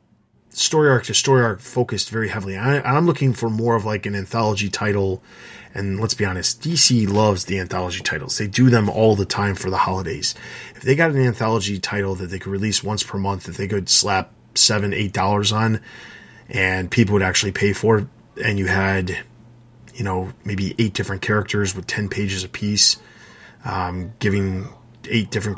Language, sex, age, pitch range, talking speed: English, male, 20-39, 100-120 Hz, 190 wpm